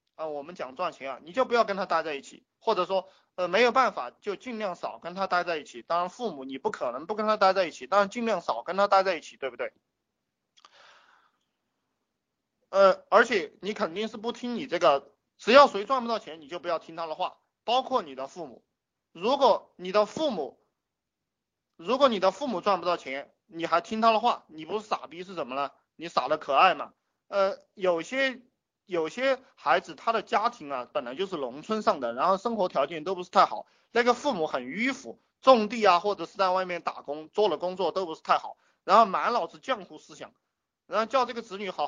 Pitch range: 170-230 Hz